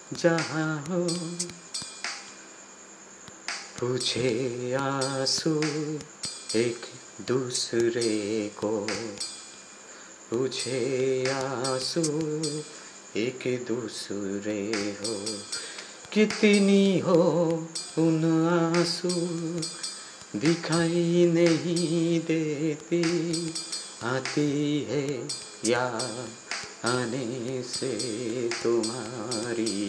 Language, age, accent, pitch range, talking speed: Bengali, 30-49, native, 110-160 Hz, 35 wpm